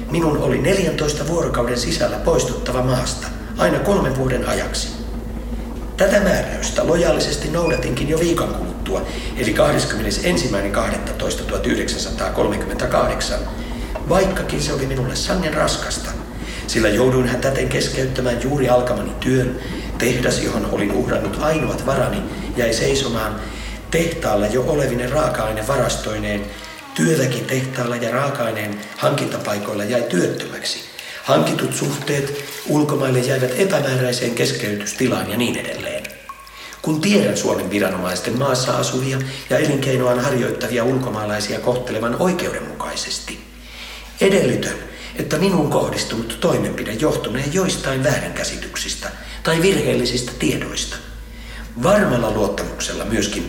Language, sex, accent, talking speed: Finnish, male, native, 100 wpm